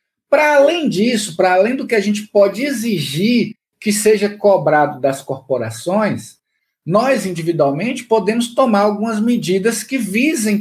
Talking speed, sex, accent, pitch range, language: 135 wpm, male, Brazilian, 175-235 Hz, Portuguese